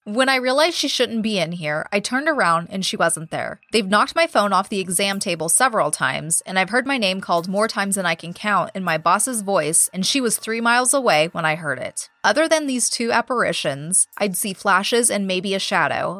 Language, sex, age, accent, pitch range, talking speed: English, female, 20-39, American, 175-235 Hz, 235 wpm